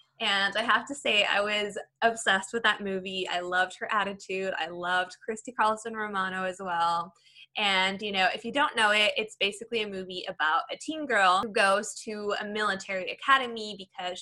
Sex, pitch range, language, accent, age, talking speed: female, 185-220 Hz, English, American, 10-29, 190 wpm